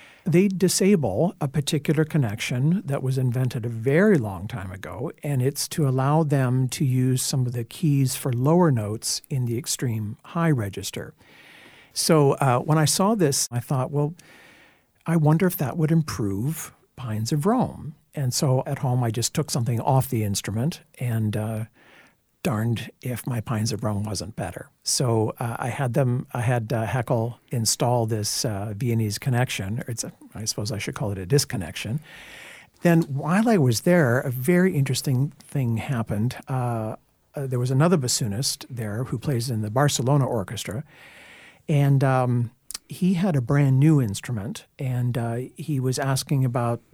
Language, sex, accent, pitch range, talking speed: English, male, American, 115-150 Hz, 165 wpm